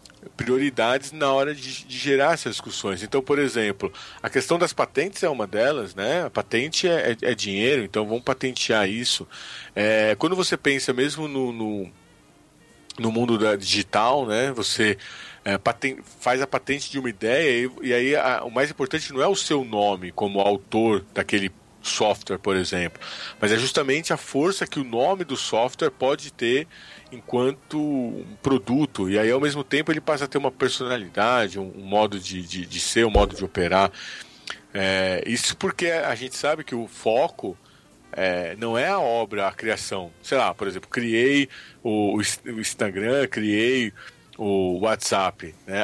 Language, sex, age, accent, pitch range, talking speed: Portuguese, male, 40-59, Brazilian, 105-140 Hz, 170 wpm